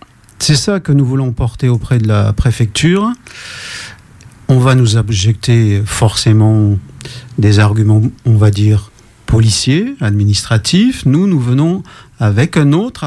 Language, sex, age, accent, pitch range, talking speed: French, male, 40-59, French, 115-150 Hz, 130 wpm